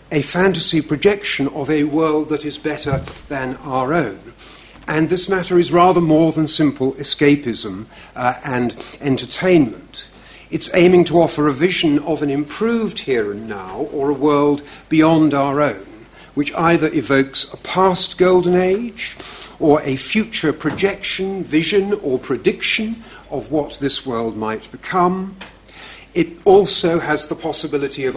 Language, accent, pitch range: English, British, 135-180 Hz